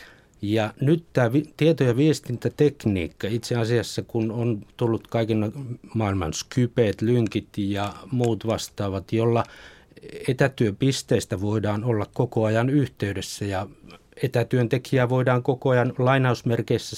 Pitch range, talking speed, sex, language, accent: 105-125 Hz, 110 wpm, male, Finnish, native